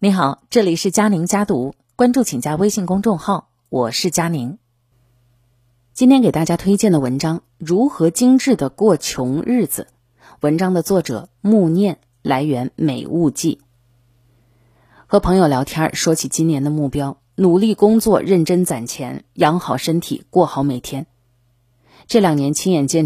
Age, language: 20-39, Chinese